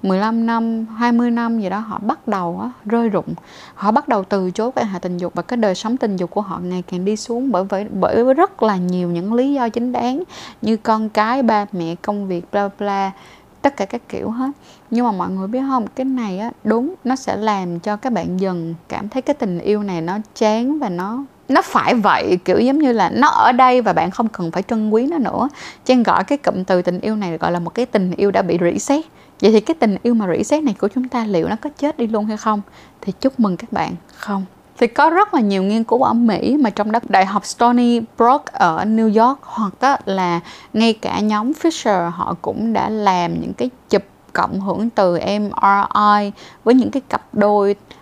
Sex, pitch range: female, 195-245 Hz